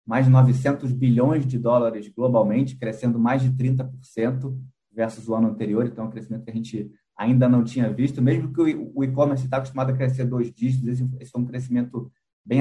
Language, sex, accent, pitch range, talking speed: Portuguese, male, Brazilian, 115-135 Hz, 190 wpm